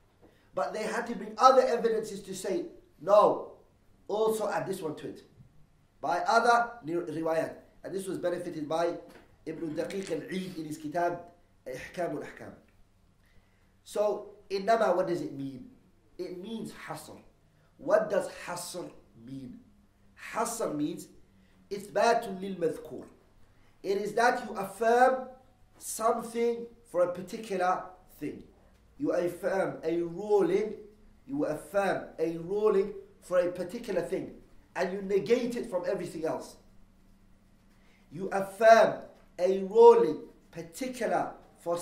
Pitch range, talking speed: 150-210 Hz, 120 wpm